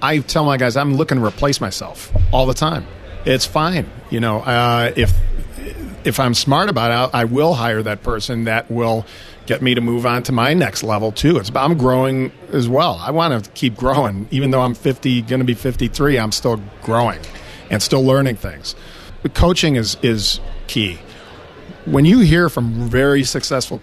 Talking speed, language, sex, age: 190 wpm, English, male, 40-59